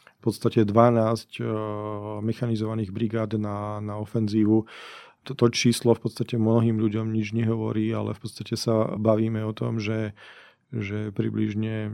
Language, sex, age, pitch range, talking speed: Slovak, male, 40-59, 105-115 Hz, 125 wpm